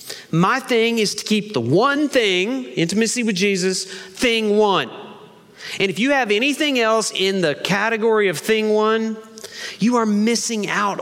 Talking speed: 160 wpm